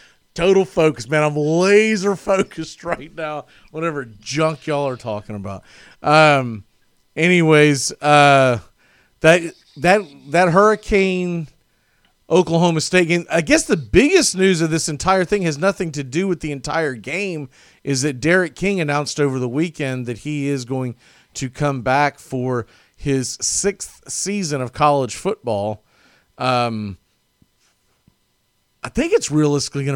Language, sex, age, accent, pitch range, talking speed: English, male, 40-59, American, 130-175 Hz, 140 wpm